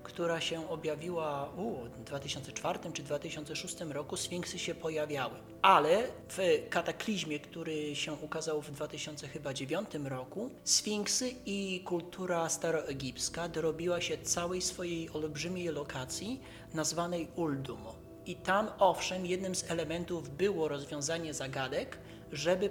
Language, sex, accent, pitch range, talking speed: Polish, male, native, 140-175 Hz, 110 wpm